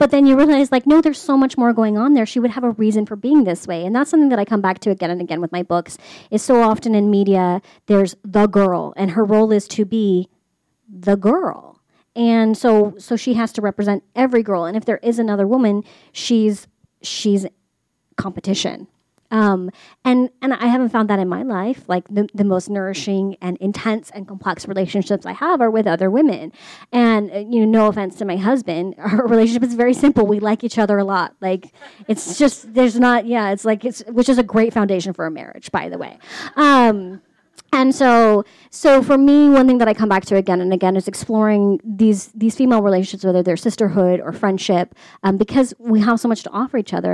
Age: 30-49